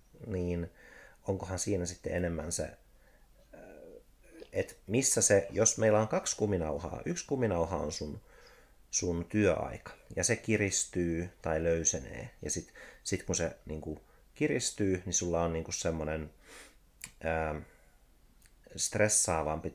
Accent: native